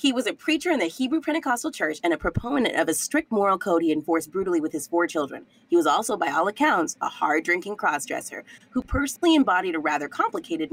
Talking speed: 220 wpm